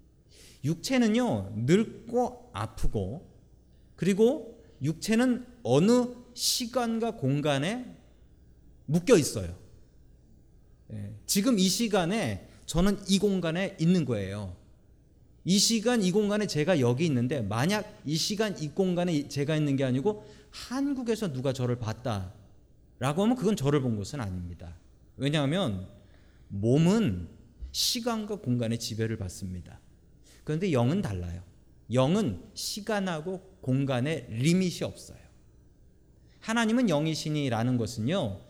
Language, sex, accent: Korean, male, native